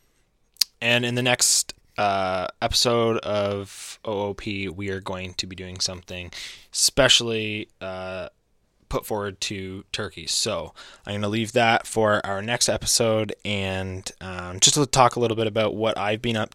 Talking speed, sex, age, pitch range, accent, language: 160 wpm, male, 10-29, 95-110 Hz, American, English